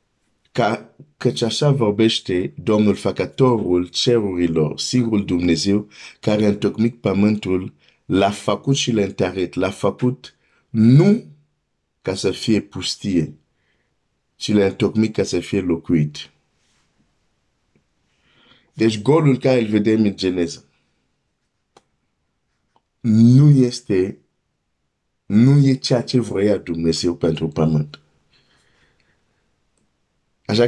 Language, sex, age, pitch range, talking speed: Romanian, male, 50-69, 90-120 Hz, 90 wpm